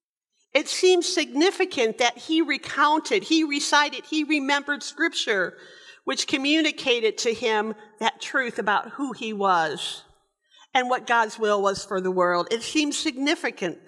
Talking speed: 140 wpm